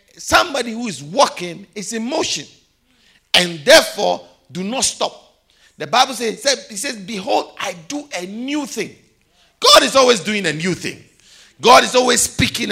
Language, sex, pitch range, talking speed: English, male, 175-255 Hz, 160 wpm